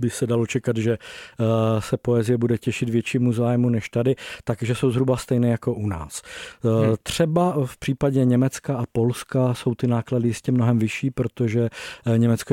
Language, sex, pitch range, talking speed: Czech, male, 120-130 Hz, 165 wpm